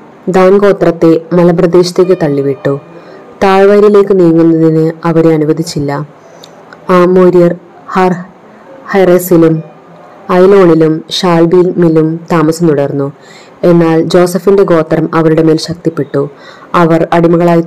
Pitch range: 155-185 Hz